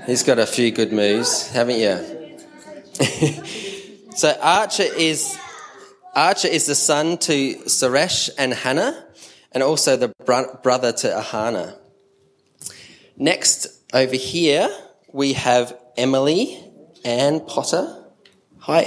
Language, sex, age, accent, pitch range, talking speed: English, male, 20-39, Australian, 120-160 Hz, 110 wpm